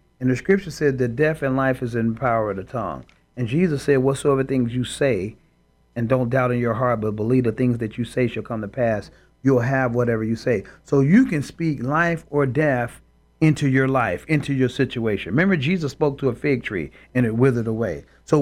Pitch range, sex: 125-155 Hz, male